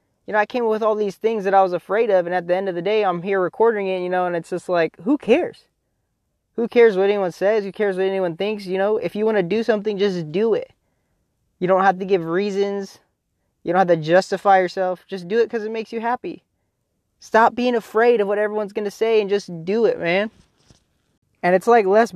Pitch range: 175-210 Hz